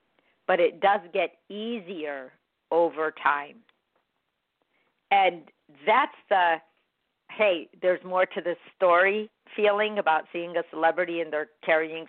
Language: English